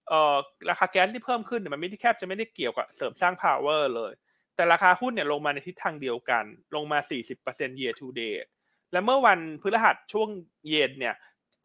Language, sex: Thai, male